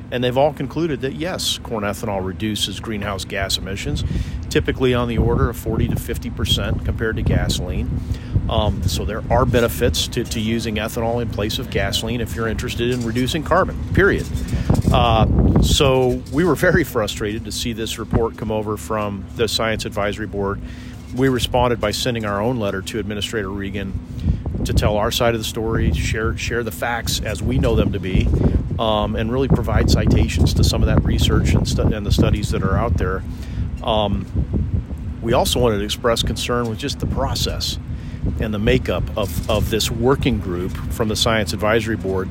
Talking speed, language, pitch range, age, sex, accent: 185 wpm, English, 100-120 Hz, 40-59, male, American